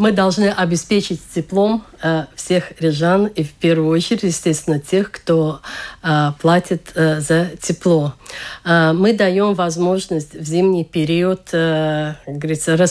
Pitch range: 160-190 Hz